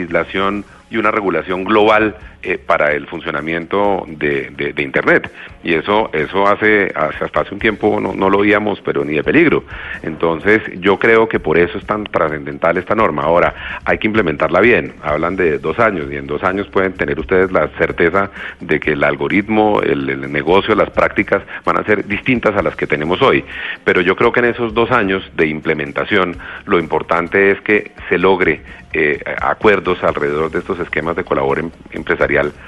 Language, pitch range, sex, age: Spanish, 85-105 Hz, male, 40-59